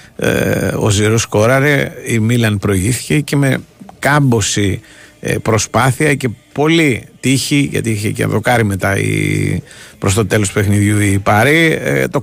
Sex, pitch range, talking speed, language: male, 100-130 Hz, 125 wpm, Greek